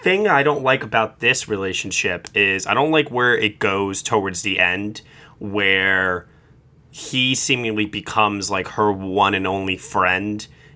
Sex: male